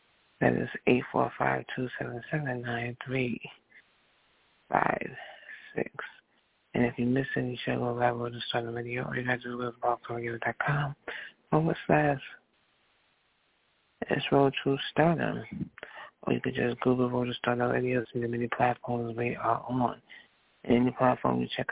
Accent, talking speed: American, 180 wpm